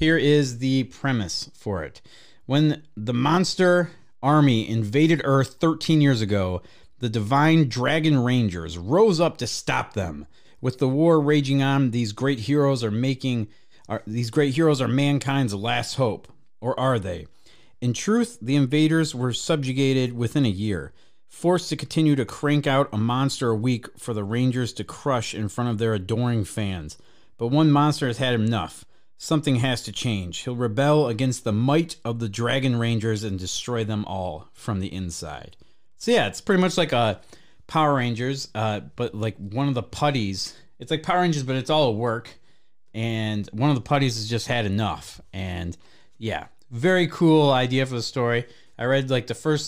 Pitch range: 110-145 Hz